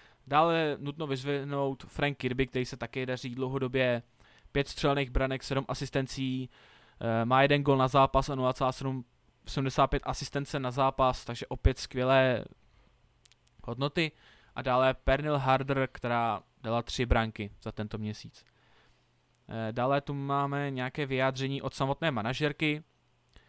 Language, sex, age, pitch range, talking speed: Czech, male, 20-39, 125-145 Hz, 125 wpm